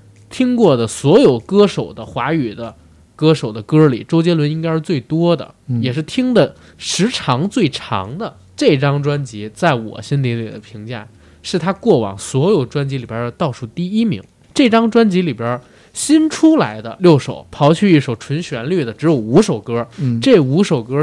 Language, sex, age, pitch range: Chinese, male, 20-39, 120-175 Hz